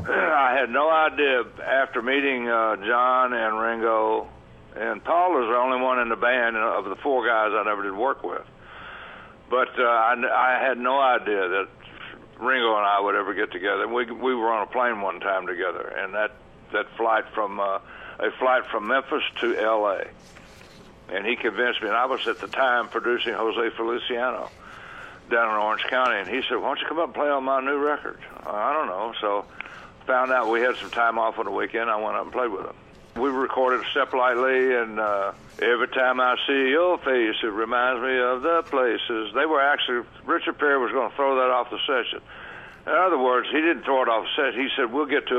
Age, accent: 60-79, American